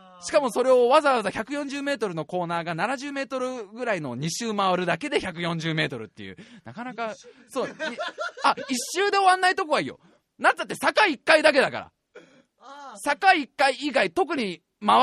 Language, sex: Japanese, male